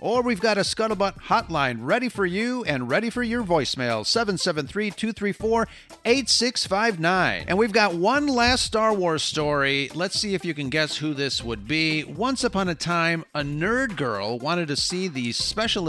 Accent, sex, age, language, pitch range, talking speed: American, male, 40-59, English, 125-175 Hz, 170 wpm